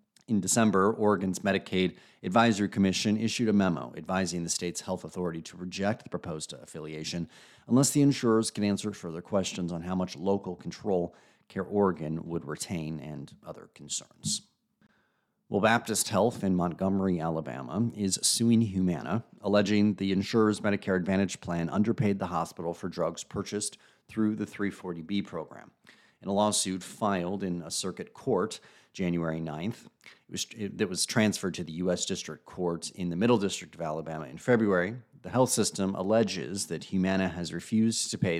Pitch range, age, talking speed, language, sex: 85-105 Hz, 40-59, 155 wpm, English, male